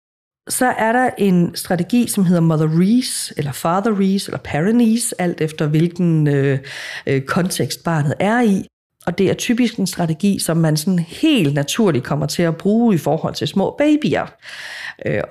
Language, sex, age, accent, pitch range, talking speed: Danish, female, 50-69, native, 170-240 Hz, 165 wpm